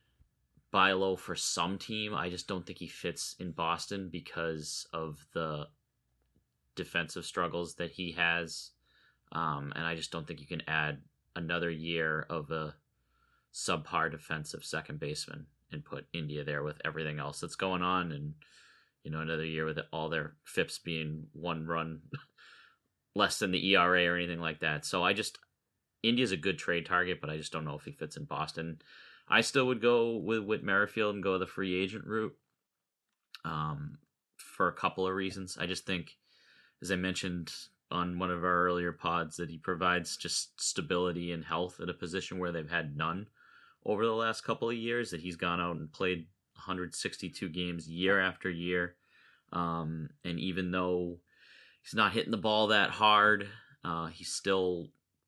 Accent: American